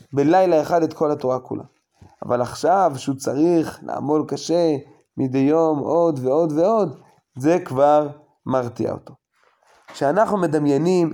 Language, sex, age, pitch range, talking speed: Hebrew, male, 20-39, 130-155 Hz, 125 wpm